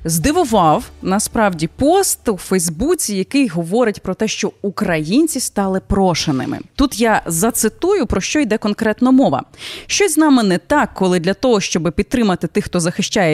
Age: 20-39